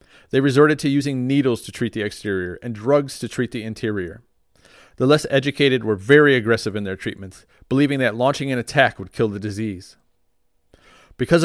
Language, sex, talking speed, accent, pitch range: English, male, 180 wpm, American, 105-140 Hz